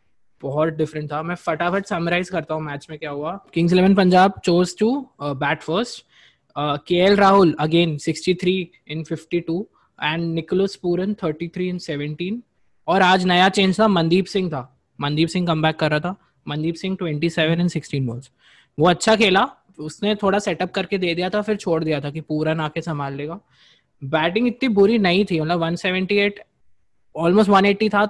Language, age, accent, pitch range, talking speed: Hindi, 20-39, native, 155-200 Hz, 120 wpm